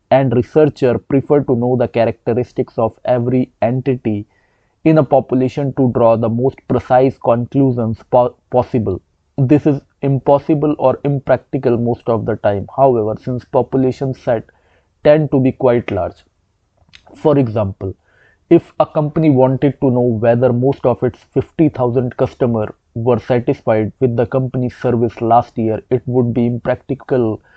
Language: English